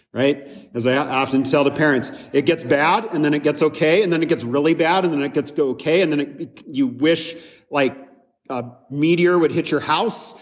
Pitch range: 150-215 Hz